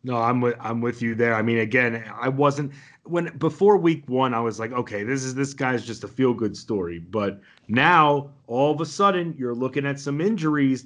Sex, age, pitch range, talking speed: male, 30-49, 120-150 Hz, 220 wpm